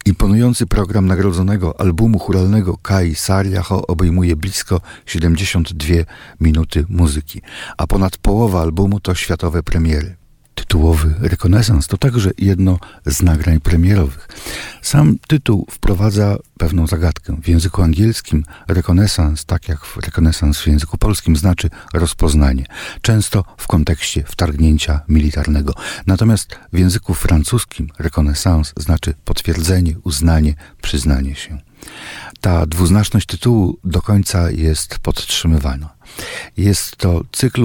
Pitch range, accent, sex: 80-100 Hz, native, male